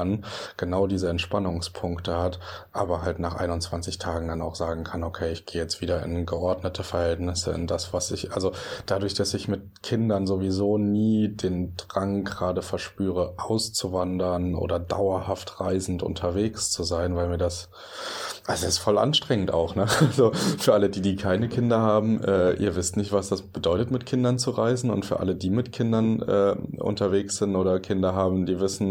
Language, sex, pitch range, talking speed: German, male, 90-100 Hz, 180 wpm